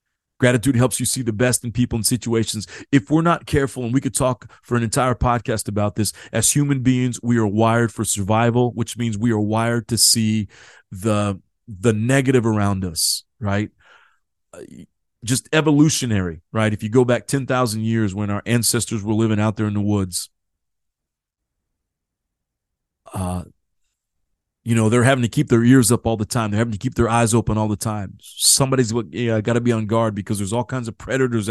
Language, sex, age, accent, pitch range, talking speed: English, male, 30-49, American, 105-125 Hz, 190 wpm